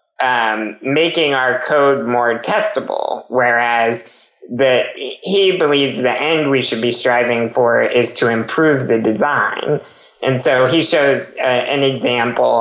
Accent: American